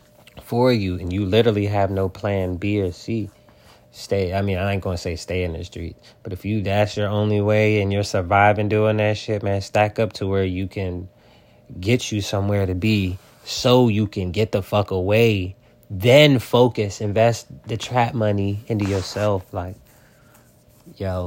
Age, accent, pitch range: 20-39, American, 95-110 Hz